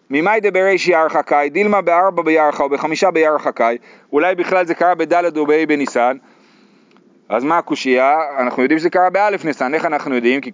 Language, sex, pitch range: Hebrew, male, 150-215 Hz